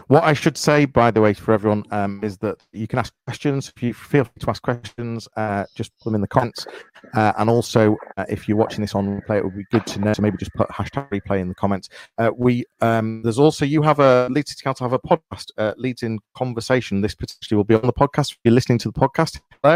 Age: 40-59